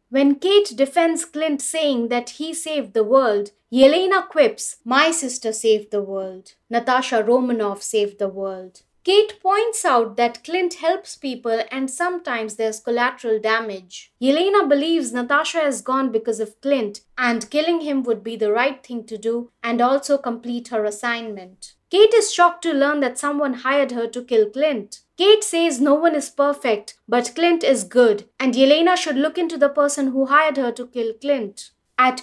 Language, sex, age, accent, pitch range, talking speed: English, female, 30-49, Indian, 235-305 Hz, 175 wpm